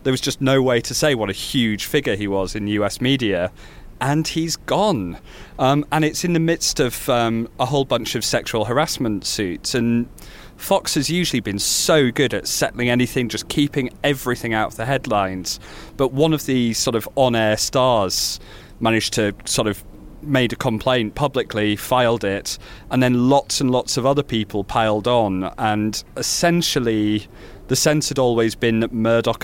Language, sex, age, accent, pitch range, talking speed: English, male, 30-49, British, 105-130 Hz, 180 wpm